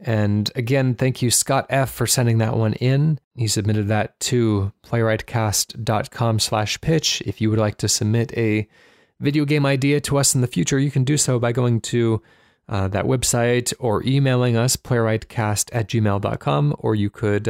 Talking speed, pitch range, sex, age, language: 180 wpm, 105-125 Hz, male, 30-49, English